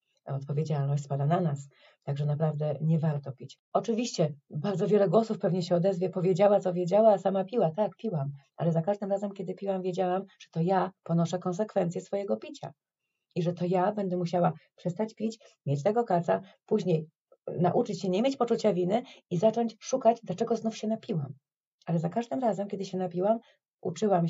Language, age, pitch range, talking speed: Polish, 30-49, 170-220 Hz, 175 wpm